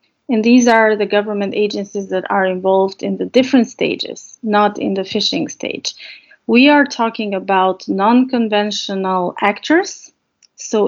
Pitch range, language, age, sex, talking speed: 195-235 Hz, English, 30-49, female, 140 wpm